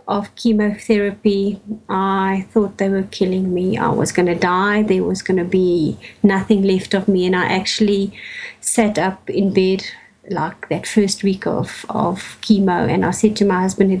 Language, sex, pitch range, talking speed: English, female, 190-225 Hz, 185 wpm